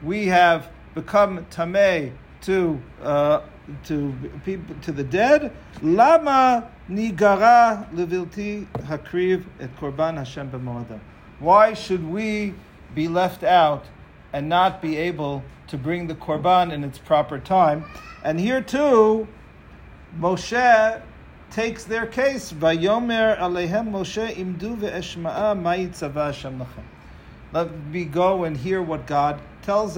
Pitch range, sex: 155-210 Hz, male